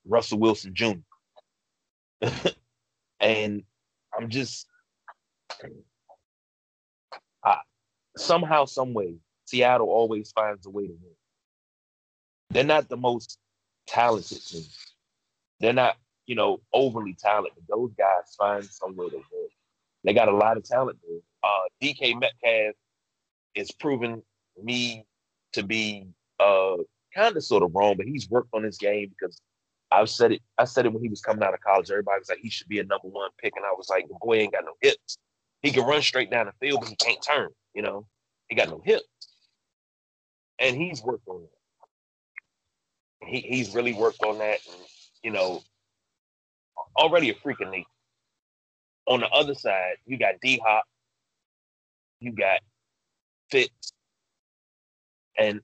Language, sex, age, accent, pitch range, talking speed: English, male, 30-49, American, 100-130 Hz, 150 wpm